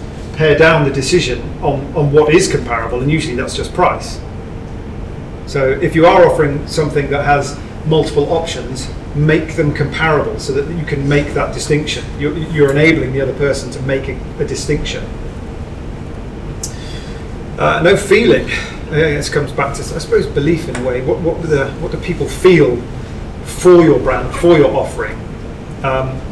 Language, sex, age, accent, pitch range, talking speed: English, male, 30-49, British, 135-165 Hz, 155 wpm